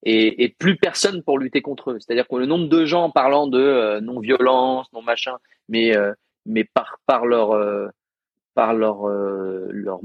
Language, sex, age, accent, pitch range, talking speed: French, male, 30-49, French, 110-145 Hz, 180 wpm